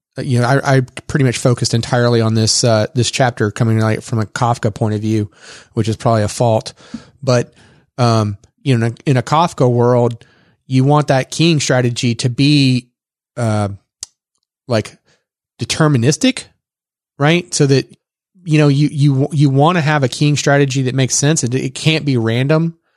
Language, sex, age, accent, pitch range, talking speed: English, male, 30-49, American, 120-145 Hz, 175 wpm